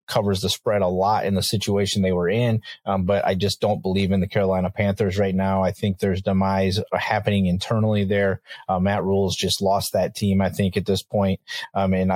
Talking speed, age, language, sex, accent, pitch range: 215 wpm, 30-49, English, male, American, 95-105 Hz